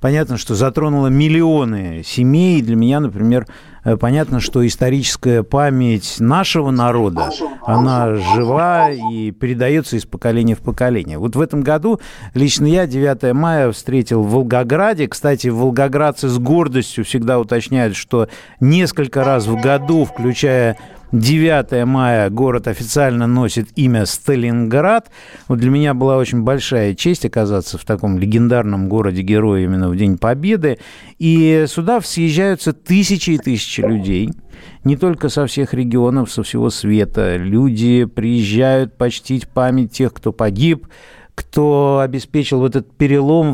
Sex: male